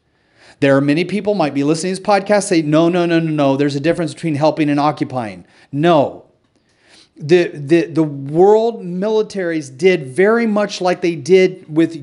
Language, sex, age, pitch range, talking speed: English, male, 40-59, 160-205 Hz, 180 wpm